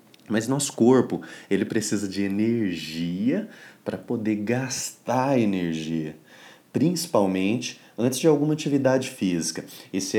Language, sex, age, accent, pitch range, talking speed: Portuguese, male, 30-49, Brazilian, 90-130 Hz, 110 wpm